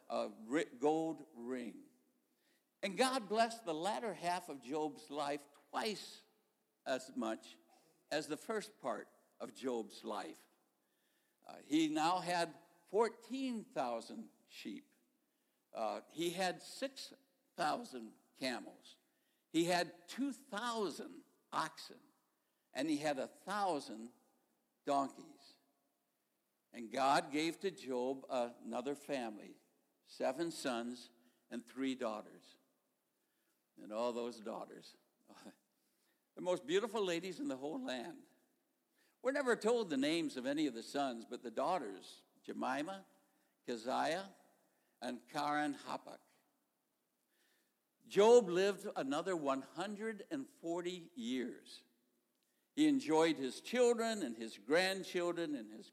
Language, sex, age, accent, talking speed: English, male, 60-79, American, 105 wpm